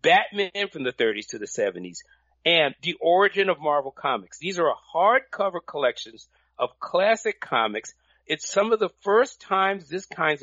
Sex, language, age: male, English, 50-69